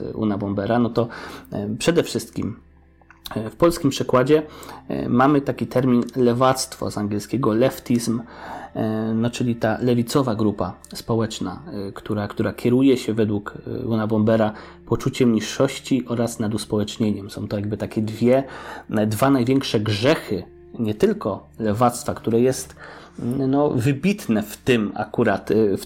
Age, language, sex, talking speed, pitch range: 30-49, Polish, male, 125 wpm, 105-130 Hz